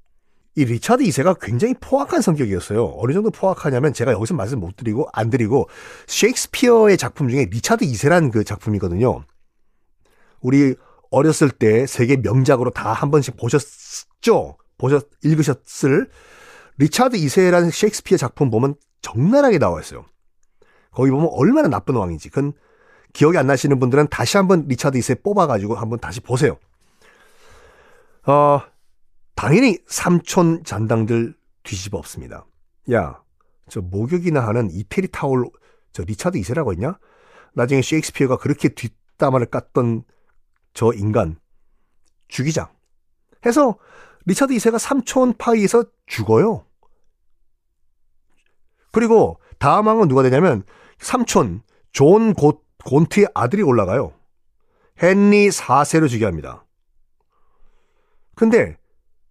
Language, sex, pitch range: Korean, male, 115-195 Hz